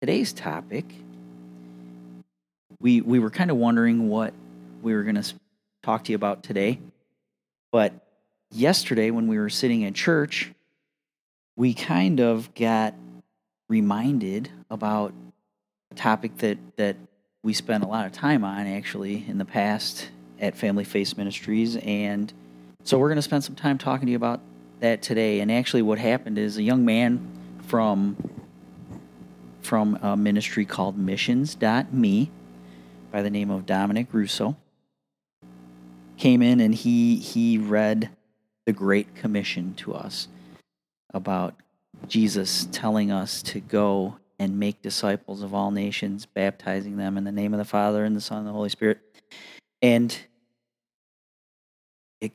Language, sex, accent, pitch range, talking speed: English, male, American, 95-110 Hz, 145 wpm